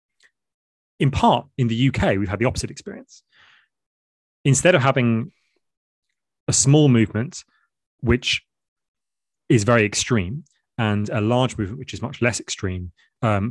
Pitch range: 105-130 Hz